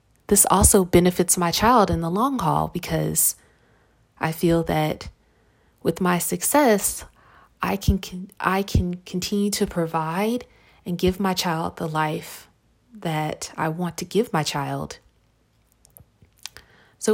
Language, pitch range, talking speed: English, 155-195 Hz, 130 wpm